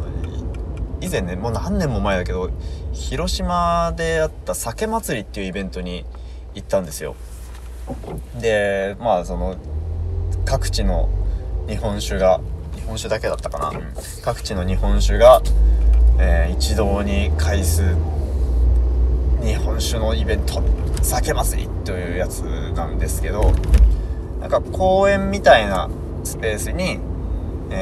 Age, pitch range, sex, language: 20-39, 65-95 Hz, male, Japanese